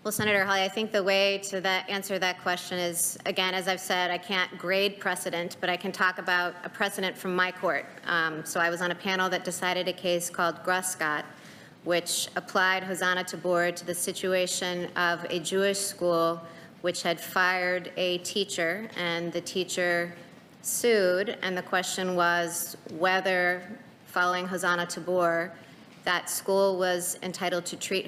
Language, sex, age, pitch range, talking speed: English, female, 30-49, 170-190 Hz, 165 wpm